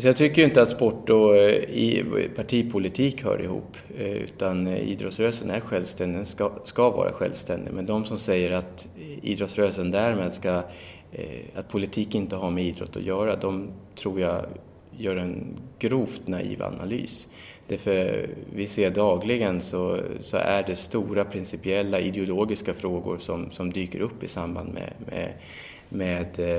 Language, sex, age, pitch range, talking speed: English, male, 20-39, 90-100 Hz, 140 wpm